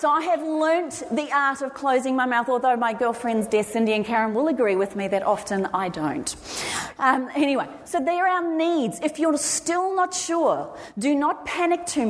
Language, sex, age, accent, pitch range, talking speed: English, female, 30-49, Australian, 200-265 Hz, 195 wpm